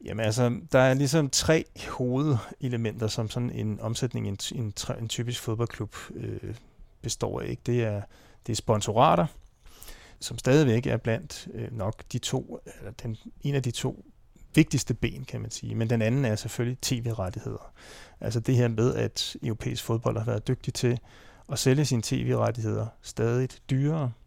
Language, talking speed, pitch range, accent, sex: Danish, 165 wpm, 110-125 Hz, native, male